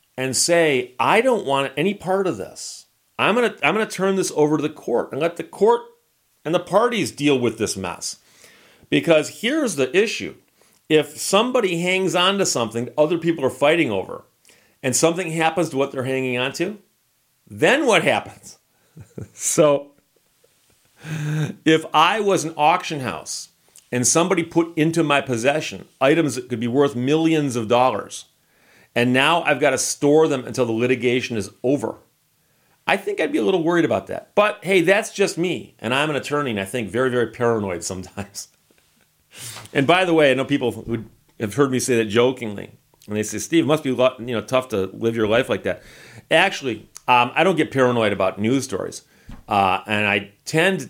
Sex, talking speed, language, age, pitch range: male, 185 wpm, English, 40-59, 120-165 Hz